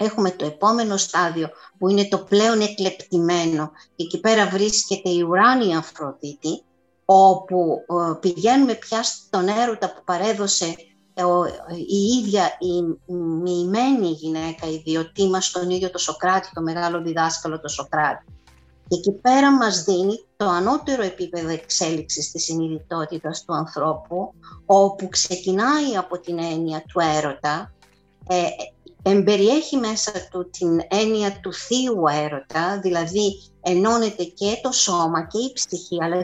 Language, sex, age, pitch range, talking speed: Greek, female, 50-69, 165-200 Hz, 125 wpm